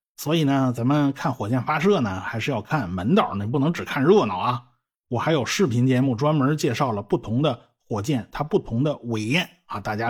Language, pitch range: Chinese, 115-170 Hz